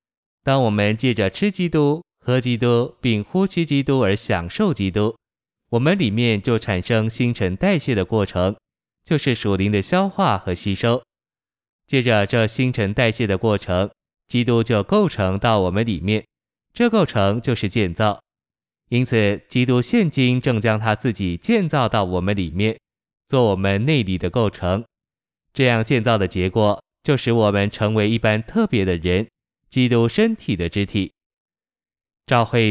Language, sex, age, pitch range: Chinese, male, 20-39, 100-125 Hz